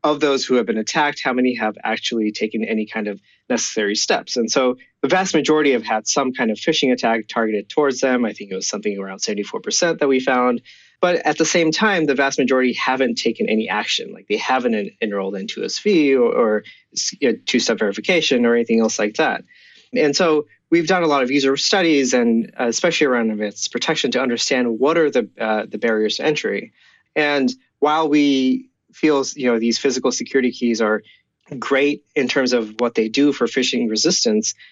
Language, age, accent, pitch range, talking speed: English, 30-49, American, 115-145 Hz, 200 wpm